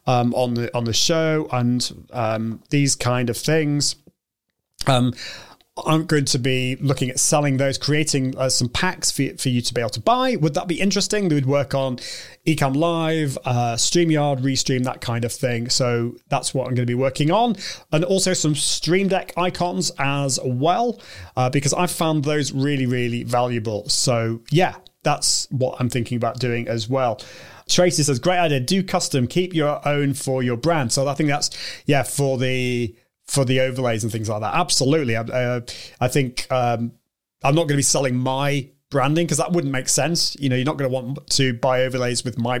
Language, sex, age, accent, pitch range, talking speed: English, male, 30-49, British, 125-160 Hz, 200 wpm